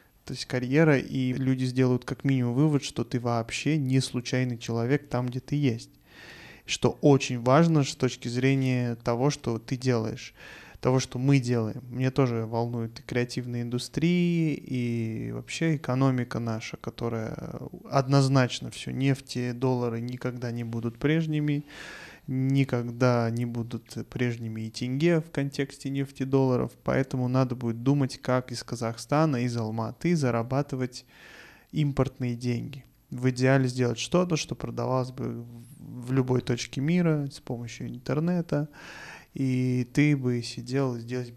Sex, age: male, 20-39